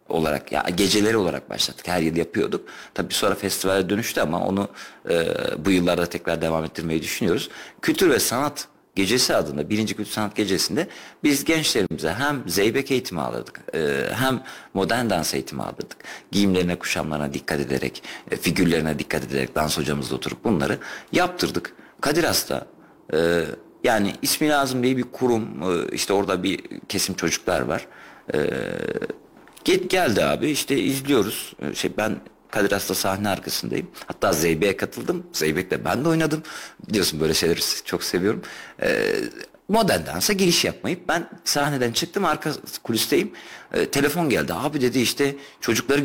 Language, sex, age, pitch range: Turkish, male, 50-69, 85-140 Hz